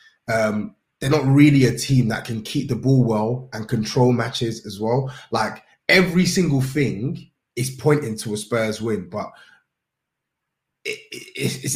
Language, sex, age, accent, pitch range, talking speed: English, male, 20-39, British, 115-155 Hz, 150 wpm